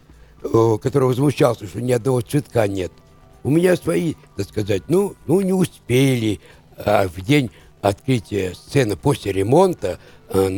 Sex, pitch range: male, 100-150 Hz